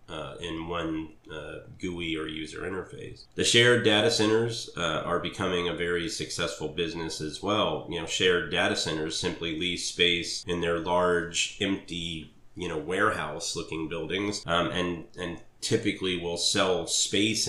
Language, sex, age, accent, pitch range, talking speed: English, male, 30-49, American, 85-100 Hz, 150 wpm